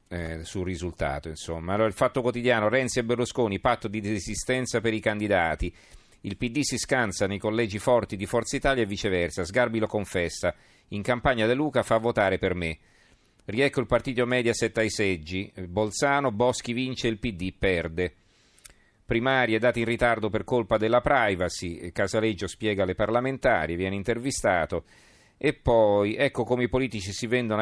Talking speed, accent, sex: 165 wpm, native, male